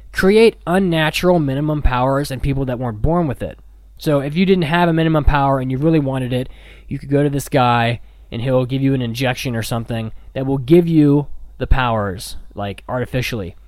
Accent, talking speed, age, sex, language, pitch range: American, 200 wpm, 20-39, male, English, 120-150 Hz